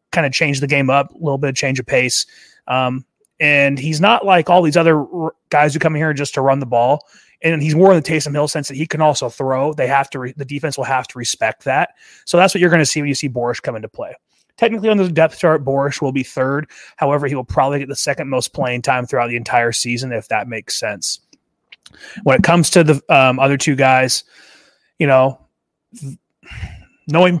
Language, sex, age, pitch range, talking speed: English, male, 30-49, 125-150 Hz, 245 wpm